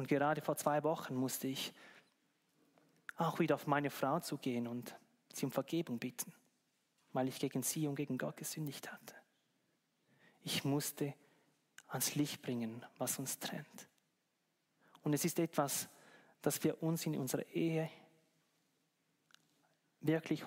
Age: 30-49